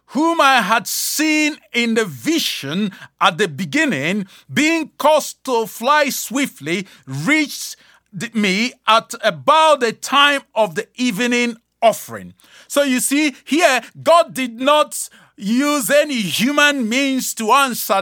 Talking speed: 125 wpm